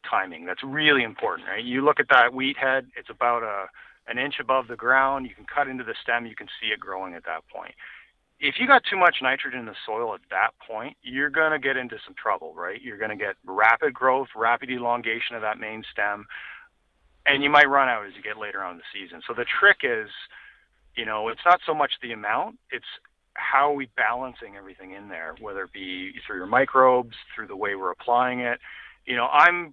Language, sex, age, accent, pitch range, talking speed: English, male, 40-59, American, 115-140 Hz, 220 wpm